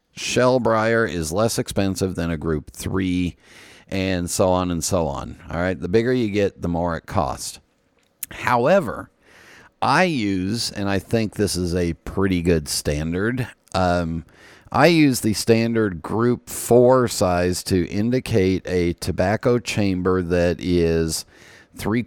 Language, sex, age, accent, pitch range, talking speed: English, male, 50-69, American, 85-110 Hz, 140 wpm